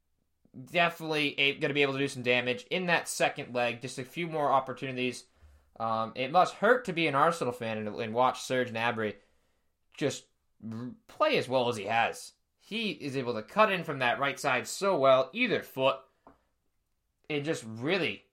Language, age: English, 20-39